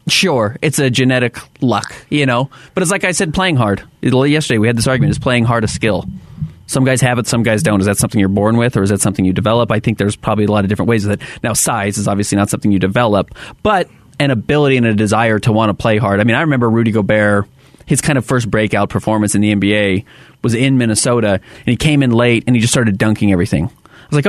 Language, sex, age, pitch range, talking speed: English, male, 30-49, 105-135 Hz, 255 wpm